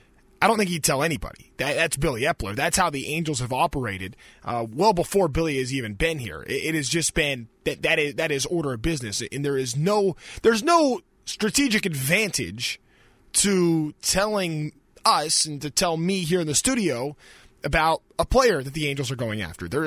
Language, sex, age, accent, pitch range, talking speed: English, male, 20-39, American, 145-190 Hz, 200 wpm